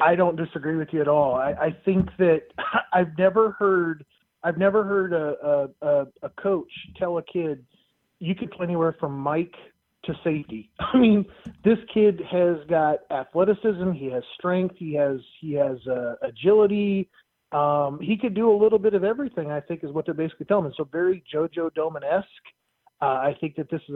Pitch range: 145-185 Hz